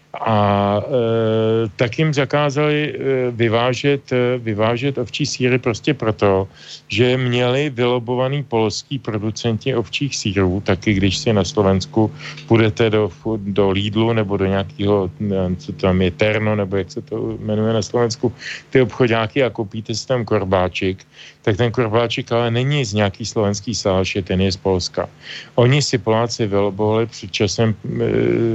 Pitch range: 105-125 Hz